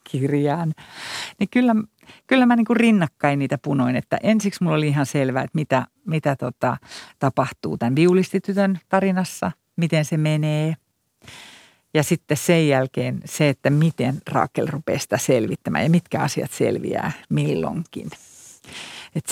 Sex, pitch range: female, 140-185 Hz